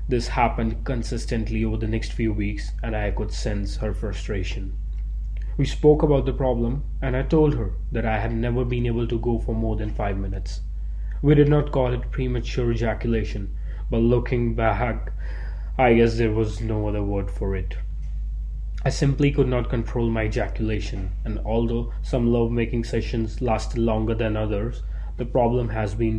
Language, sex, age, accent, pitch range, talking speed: English, male, 20-39, Indian, 95-120 Hz, 170 wpm